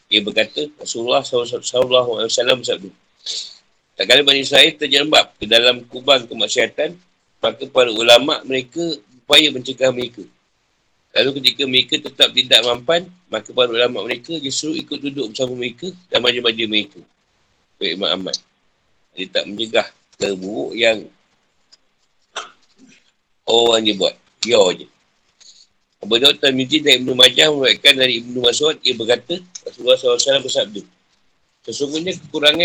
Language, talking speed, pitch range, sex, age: Malay, 120 wpm, 125-160 Hz, male, 50-69